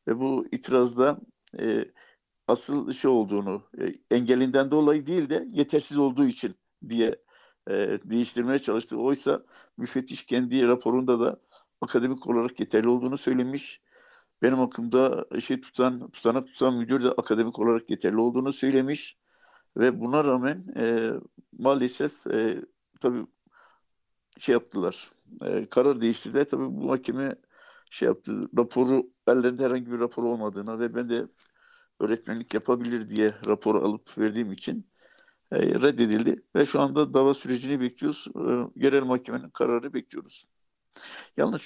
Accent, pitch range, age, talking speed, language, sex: native, 120-150 Hz, 60-79, 135 wpm, Turkish, male